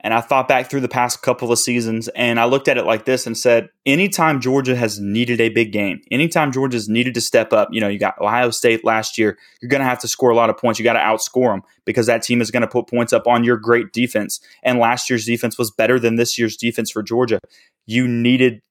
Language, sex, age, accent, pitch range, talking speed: English, male, 20-39, American, 115-130 Hz, 265 wpm